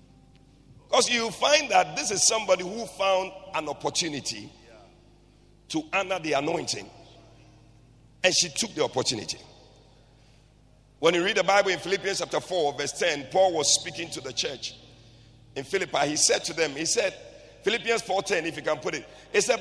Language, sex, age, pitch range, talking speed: English, male, 50-69, 145-230 Hz, 170 wpm